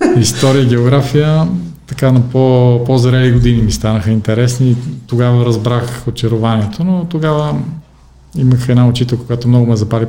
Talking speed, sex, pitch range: 125 wpm, male, 115-135 Hz